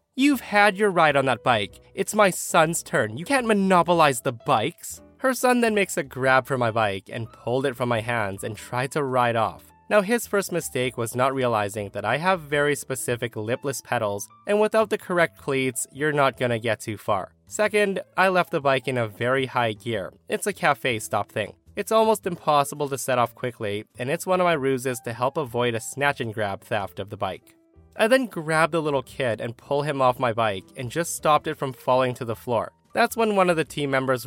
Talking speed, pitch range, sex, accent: 225 wpm, 120-185 Hz, male, American